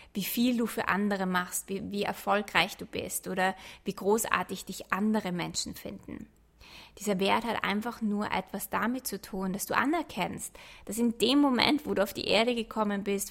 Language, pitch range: German, 195-225 Hz